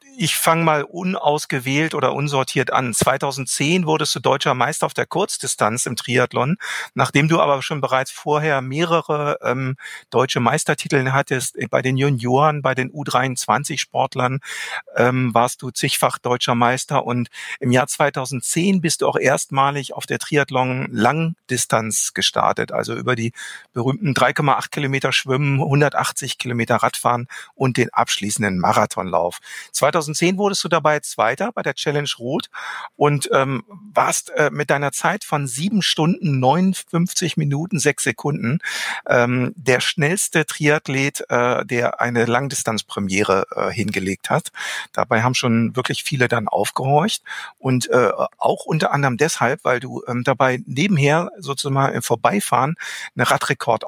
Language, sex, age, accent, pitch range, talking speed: German, male, 50-69, German, 125-155 Hz, 135 wpm